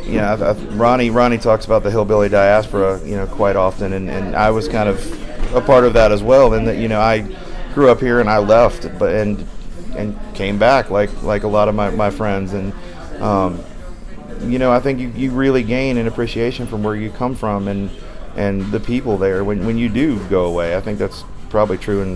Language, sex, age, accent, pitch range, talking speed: English, male, 30-49, American, 95-115 Hz, 230 wpm